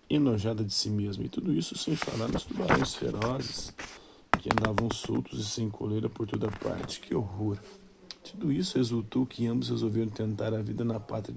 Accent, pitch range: Brazilian, 105-120 Hz